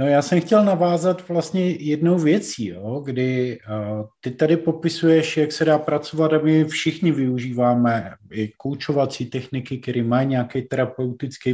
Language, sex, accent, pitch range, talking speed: Czech, male, native, 125-165 Hz, 145 wpm